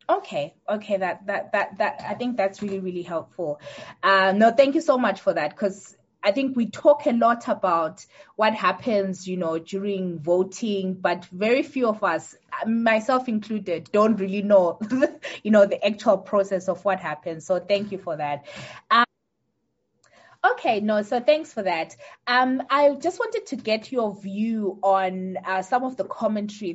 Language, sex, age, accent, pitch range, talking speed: English, female, 20-39, South African, 175-225 Hz, 175 wpm